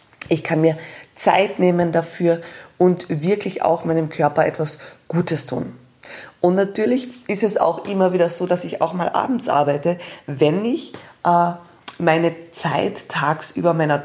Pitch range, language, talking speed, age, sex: 155-180 Hz, German, 150 wpm, 20-39, female